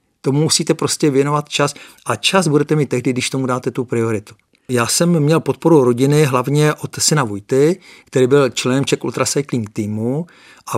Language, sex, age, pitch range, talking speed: Czech, male, 50-69, 125-145 Hz, 165 wpm